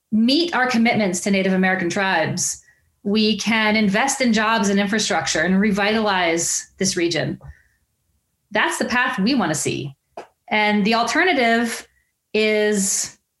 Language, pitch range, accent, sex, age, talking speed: English, 195-240 Hz, American, female, 30-49, 130 wpm